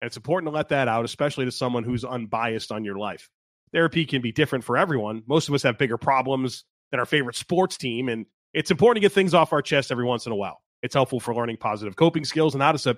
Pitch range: 125-165 Hz